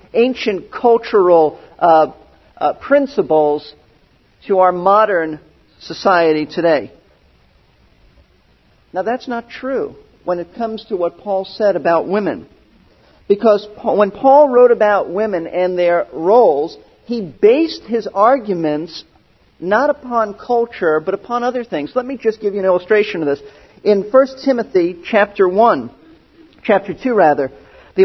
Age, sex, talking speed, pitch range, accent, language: 50-69, male, 135 wpm, 185-235 Hz, American, English